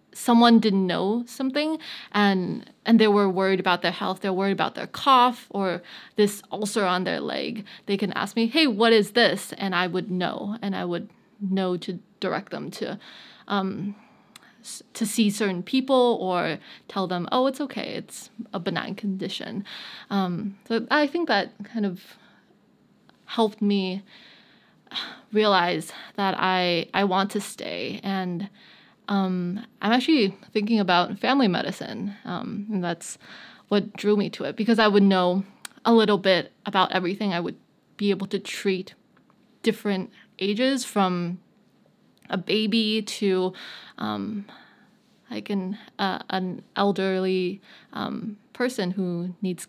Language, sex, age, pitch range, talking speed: English, female, 20-39, 190-225 Hz, 145 wpm